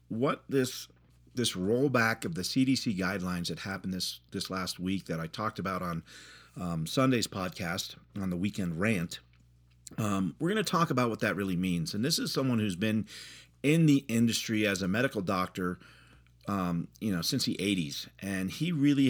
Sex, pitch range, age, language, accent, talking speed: male, 90-135 Hz, 50-69, English, American, 180 wpm